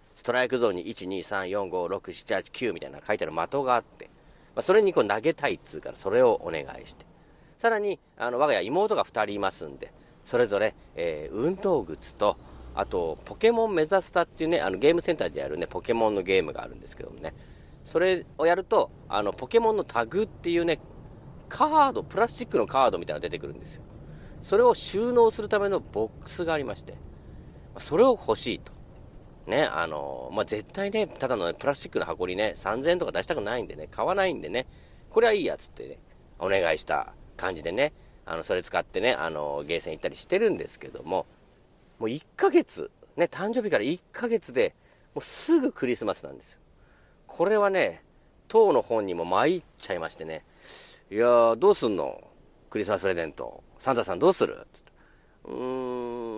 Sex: male